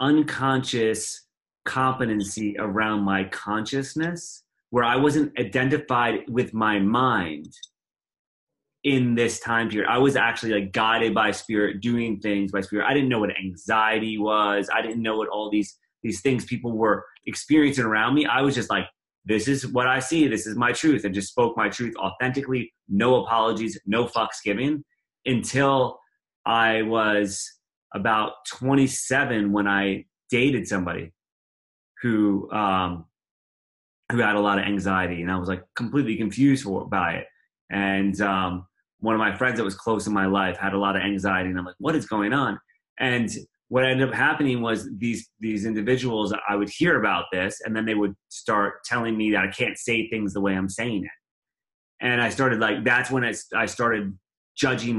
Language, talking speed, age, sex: English, 175 wpm, 30-49, male